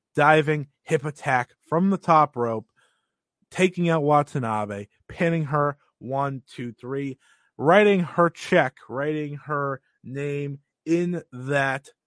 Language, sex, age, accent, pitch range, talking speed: English, male, 30-49, American, 110-150 Hz, 115 wpm